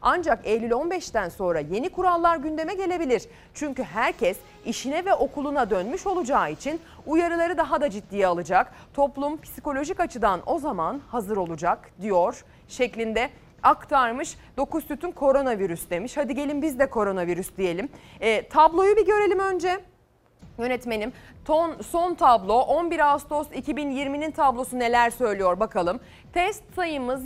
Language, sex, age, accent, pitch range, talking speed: Turkish, female, 30-49, native, 195-305 Hz, 130 wpm